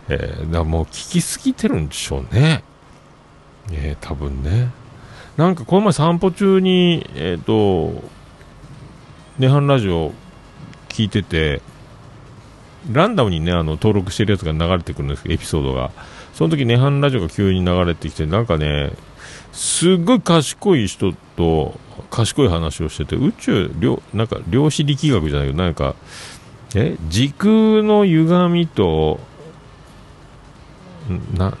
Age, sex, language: 50-69, male, Japanese